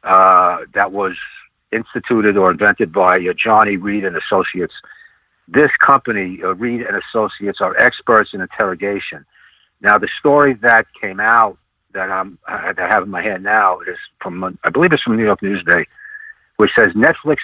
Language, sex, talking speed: English, male, 175 wpm